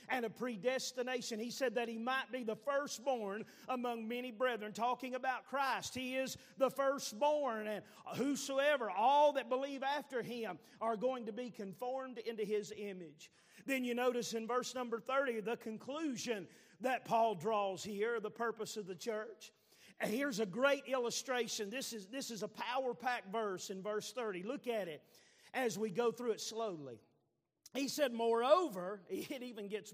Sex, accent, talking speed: male, American, 165 wpm